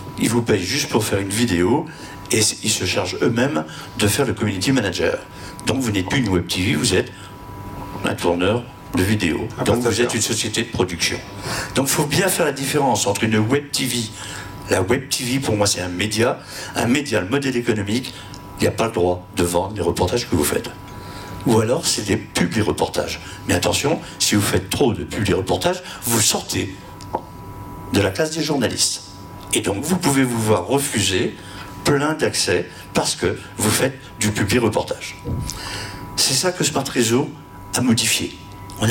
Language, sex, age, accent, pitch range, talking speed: French, male, 60-79, French, 100-135 Hz, 185 wpm